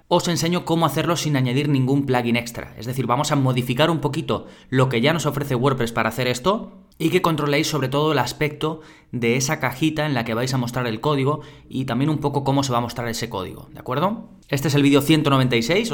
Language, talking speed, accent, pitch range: Spanish, 230 wpm, Spanish, 120-150 Hz